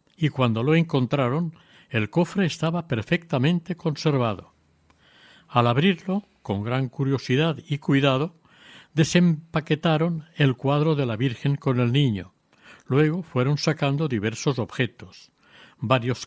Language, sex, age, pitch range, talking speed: Spanish, male, 60-79, 130-160 Hz, 115 wpm